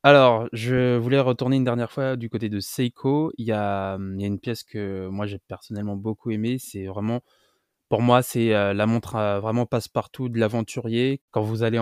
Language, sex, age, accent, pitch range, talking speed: French, male, 20-39, French, 105-125 Hz, 195 wpm